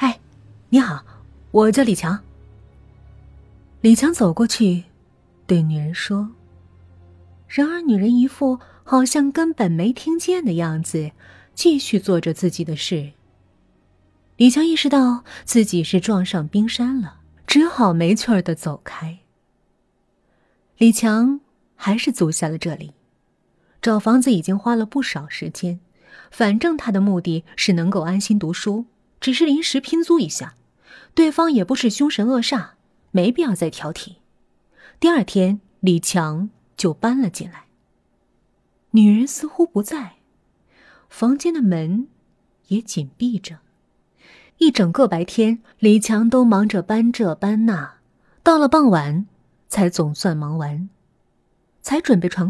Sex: female